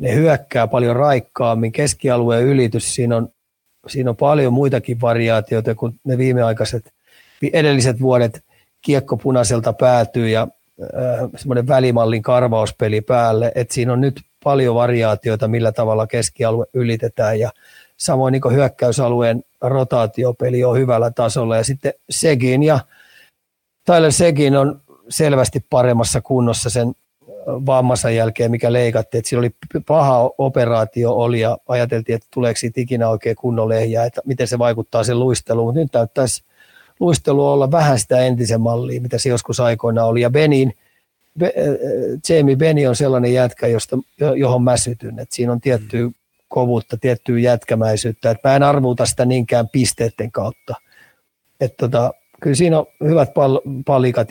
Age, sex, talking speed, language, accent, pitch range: 30-49, male, 140 wpm, Finnish, native, 115-135 Hz